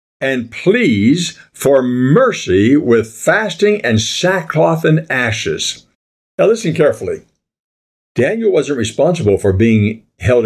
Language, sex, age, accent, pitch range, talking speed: English, male, 60-79, American, 110-180 Hz, 110 wpm